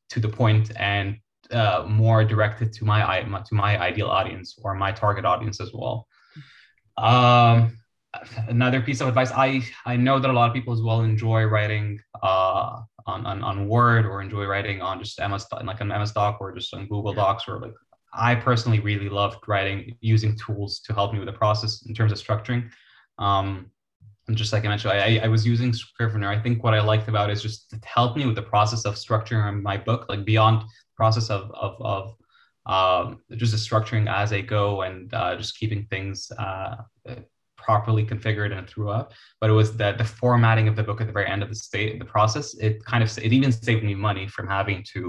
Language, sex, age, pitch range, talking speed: English, male, 20-39, 100-115 Hz, 210 wpm